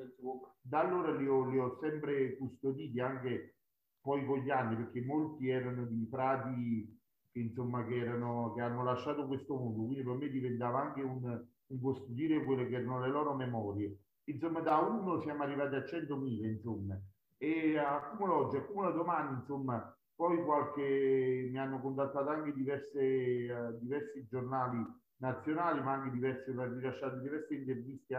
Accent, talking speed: native, 155 wpm